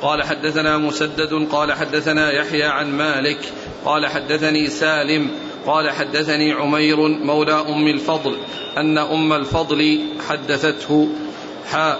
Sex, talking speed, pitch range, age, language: male, 110 wpm, 150-160 Hz, 40-59, Arabic